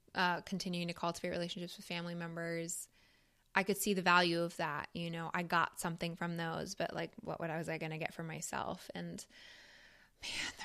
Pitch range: 170-200 Hz